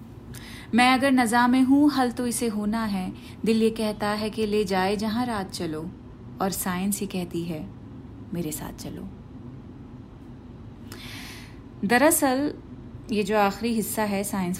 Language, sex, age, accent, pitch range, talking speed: Hindi, female, 30-49, native, 155-215 Hz, 145 wpm